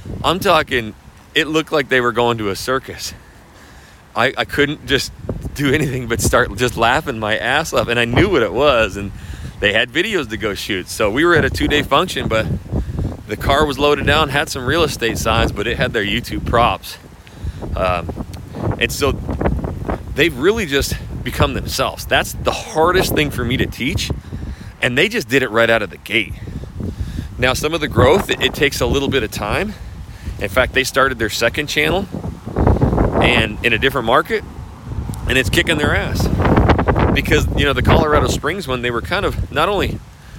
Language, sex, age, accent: English, male, 30-49, American